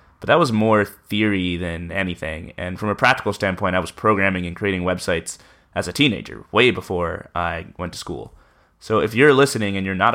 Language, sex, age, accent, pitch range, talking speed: English, male, 20-39, American, 90-110 Hz, 200 wpm